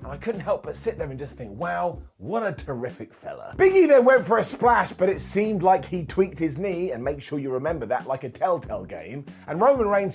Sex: male